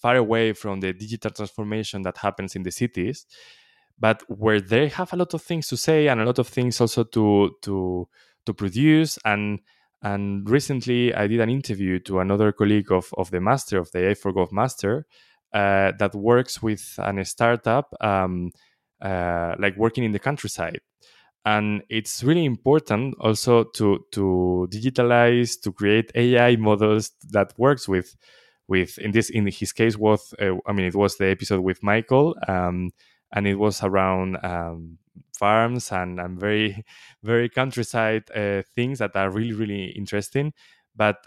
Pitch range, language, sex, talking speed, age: 95-120 Hz, English, male, 165 wpm, 20-39